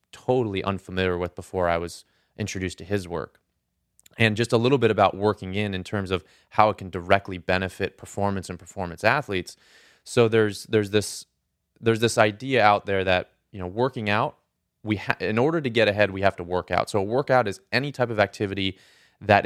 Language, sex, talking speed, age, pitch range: English, male, 195 wpm, 20-39, 90-110 Hz